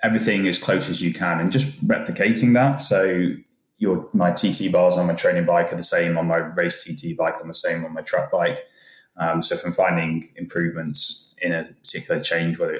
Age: 20-39